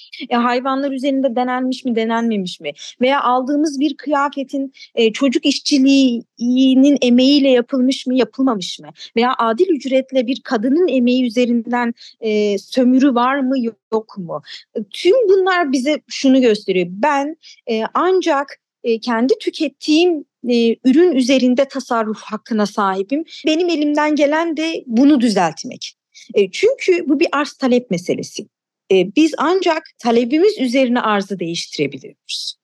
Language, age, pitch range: Turkish, 30-49, 225-290 Hz